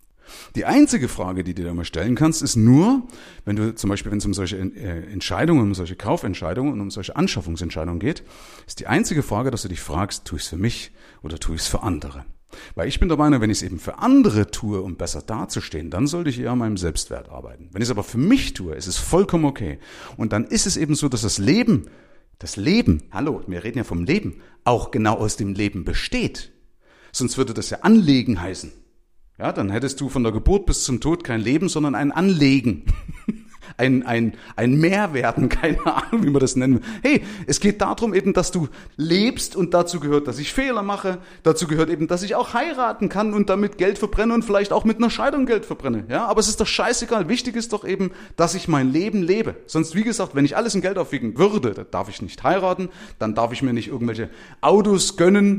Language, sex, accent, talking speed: German, male, German, 225 wpm